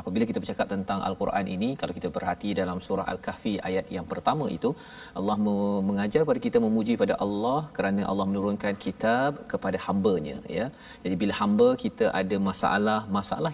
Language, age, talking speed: Malayalam, 40-59, 165 wpm